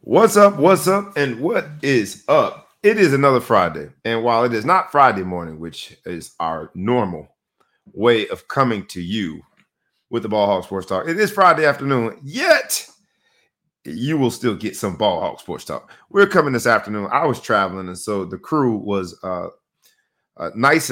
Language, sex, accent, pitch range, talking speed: English, male, American, 95-125 Hz, 180 wpm